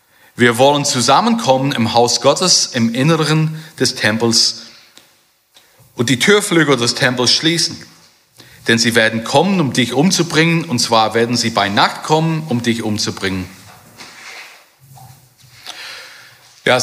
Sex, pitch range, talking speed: male, 120-165 Hz, 120 wpm